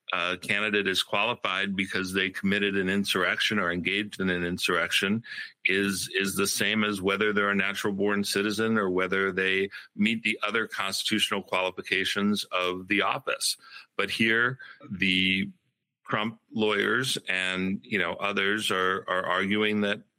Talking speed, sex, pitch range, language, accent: 145 wpm, male, 95-105 Hz, English, American